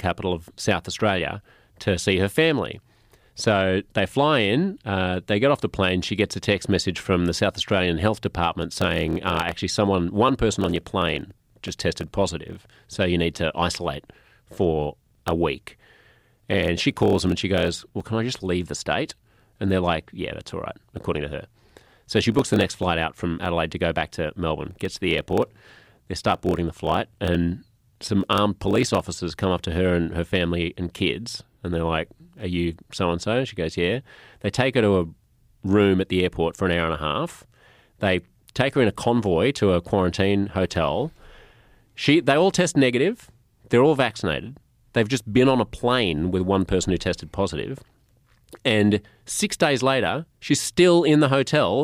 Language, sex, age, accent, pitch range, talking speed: English, male, 30-49, Australian, 90-120 Hz, 200 wpm